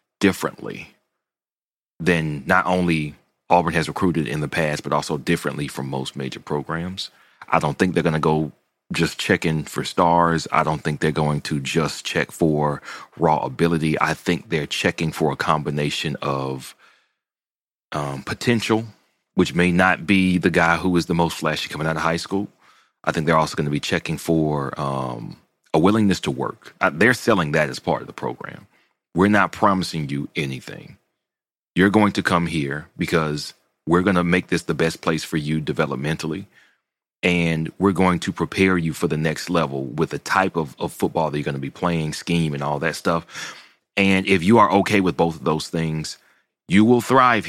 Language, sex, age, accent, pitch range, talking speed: English, male, 30-49, American, 75-90 Hz, 190 wpm